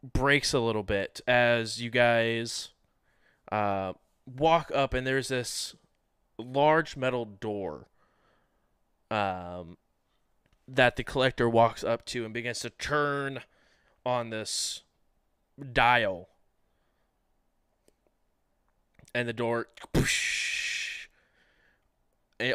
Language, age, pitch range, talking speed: English, 20-39, 110-135 Hz, 90 wpm